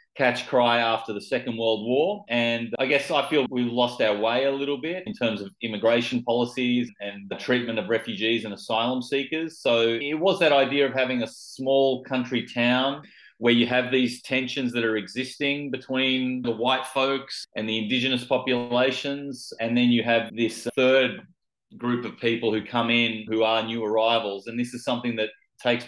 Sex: male